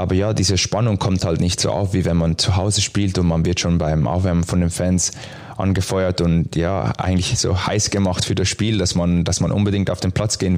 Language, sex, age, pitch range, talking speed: German, male, 20-39, 90-110 Hz, 245 wpm